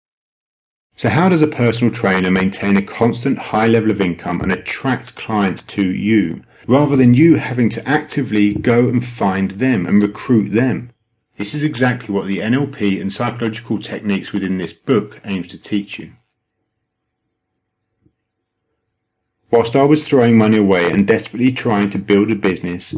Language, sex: English, male